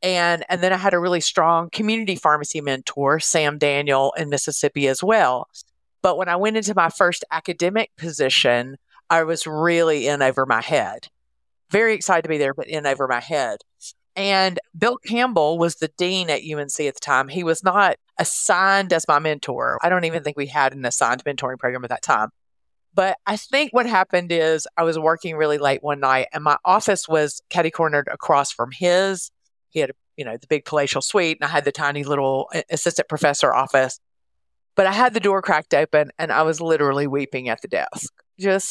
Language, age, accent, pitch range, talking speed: English, 40-59, American, 140-185 Hz, 200 wpm